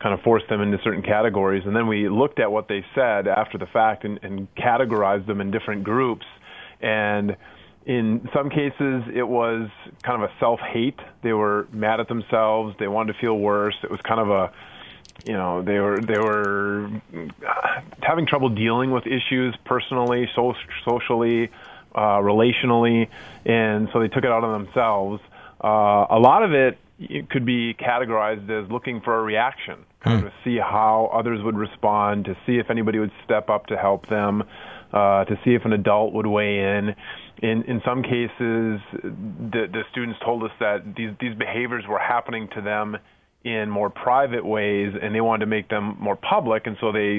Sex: male